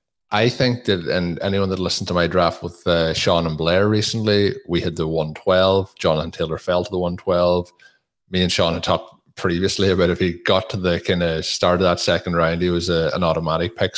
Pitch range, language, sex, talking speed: 85-100 Hz, English, male, 220 wpm